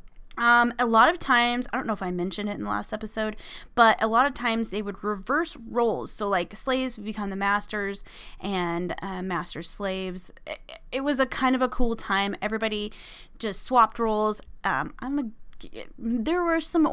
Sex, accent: female, American